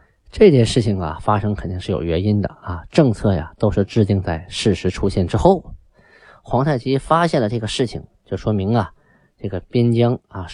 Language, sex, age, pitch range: Chinese, male, 20-39, 95-125 Hz